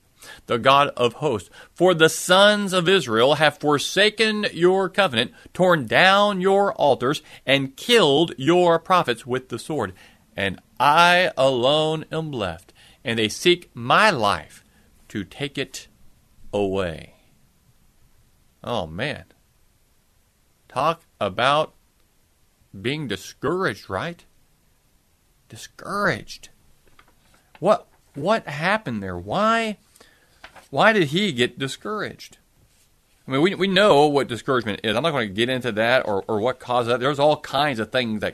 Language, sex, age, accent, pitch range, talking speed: English, male, 40-59, American, 120-175 Hz, 130 wpm